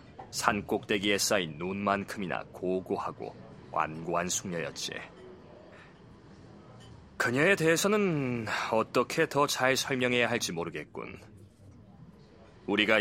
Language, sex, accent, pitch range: Korean, male, native, 100-130 Hz